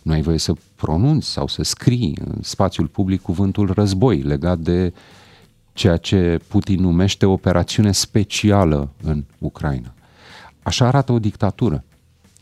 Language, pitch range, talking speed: Romanian, 85-115 Hz, 130 wpm